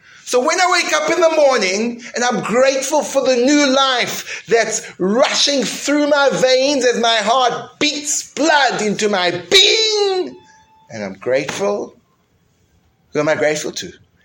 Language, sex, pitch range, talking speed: English, male, 185-270 Hz, 150 wpm